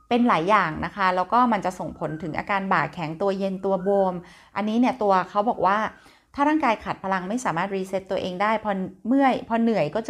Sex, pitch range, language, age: female, 170-210 Hz, Thai, 30-49